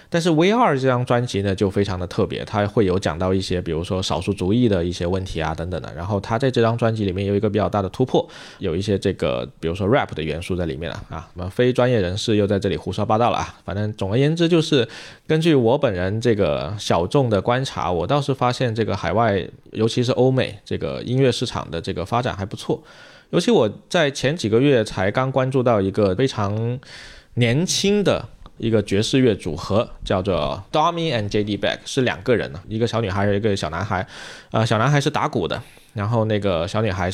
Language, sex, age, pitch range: Chinese, male, 20-39, 100-130 Hz